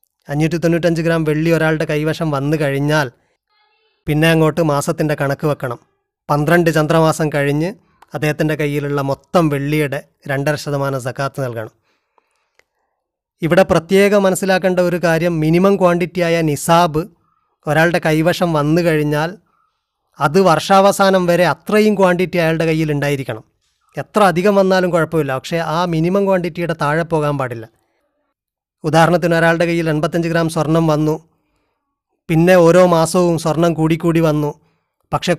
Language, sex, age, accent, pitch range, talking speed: Malayalam, male, 30-49, native, 145-175 Hz, 115 wpm